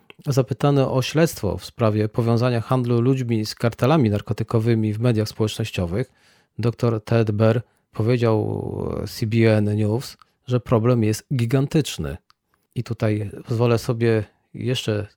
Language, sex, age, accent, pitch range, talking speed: Polish, male, 40-59, native, 110-130 Hz, 115 wpm